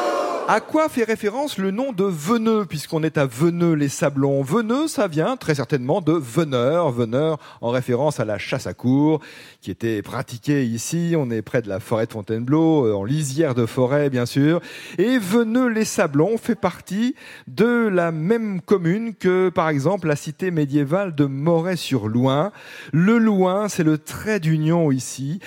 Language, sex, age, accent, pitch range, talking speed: French, male, 40-59, French, 130-185 Hz, 165 wpm